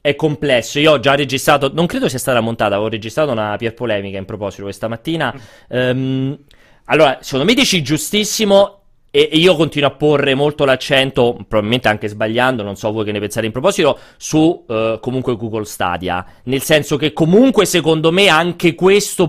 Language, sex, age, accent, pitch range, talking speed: Italian, male, 30-49, native, 125-165 Hz, 175 wpm